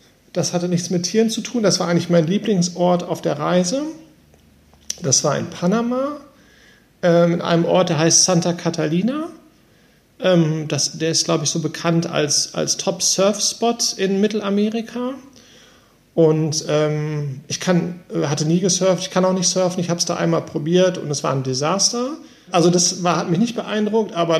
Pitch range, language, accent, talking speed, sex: 160-205 Hz, German, German, 170 wpm, male